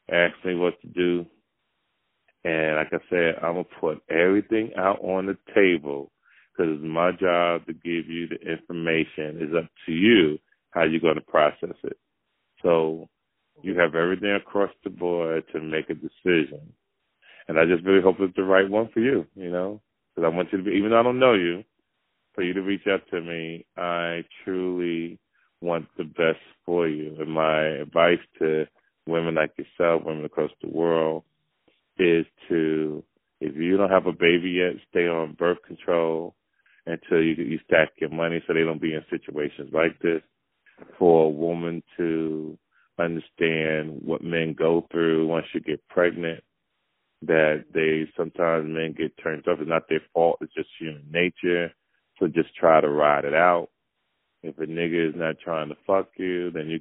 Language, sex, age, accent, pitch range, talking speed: English, male, 30-49, American, 80-90 Hz, 180 wpm